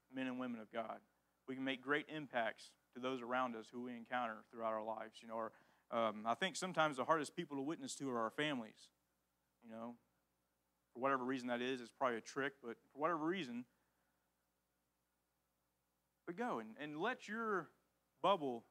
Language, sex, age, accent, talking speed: English, male, 40-59, American, 185 wpm